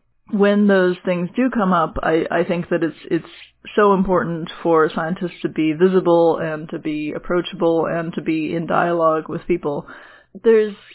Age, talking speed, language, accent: 20-39, 170 wpm, English, American